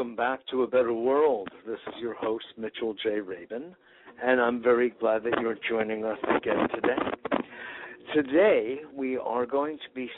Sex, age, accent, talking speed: male, 60-79, American, 165 wpm